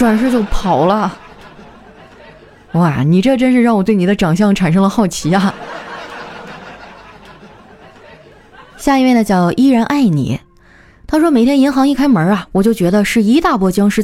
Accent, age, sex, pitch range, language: native, 20-39, female, 195-265 Hz, Chinese